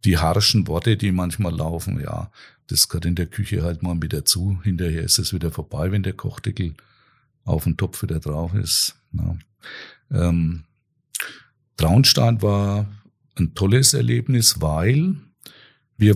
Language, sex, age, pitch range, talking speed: German, male, 50-69, 95-120 Hz, 145 wpm